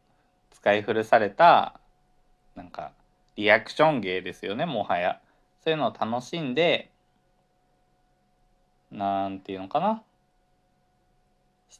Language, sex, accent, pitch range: Japanese, male, native, 90-125 Hz